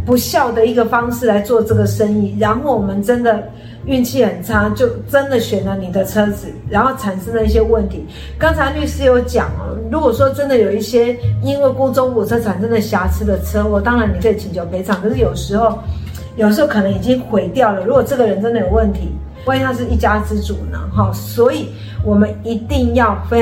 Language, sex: Chinese, female